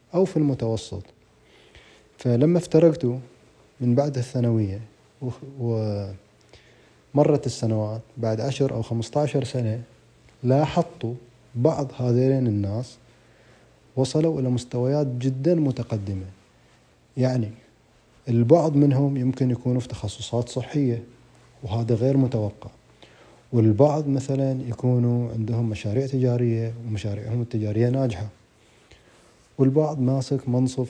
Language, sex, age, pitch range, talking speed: Arabic, male, 30-49, 110-135 Hz, 90 wpm